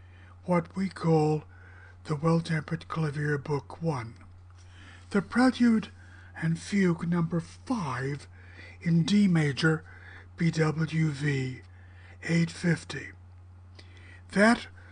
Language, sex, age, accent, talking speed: English, male, 60-79, American, 80 wpm